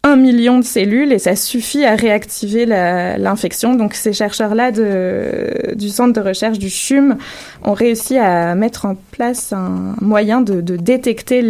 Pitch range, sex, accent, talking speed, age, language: 190-240 Hz, female, French, 155 wpm, 20-39, French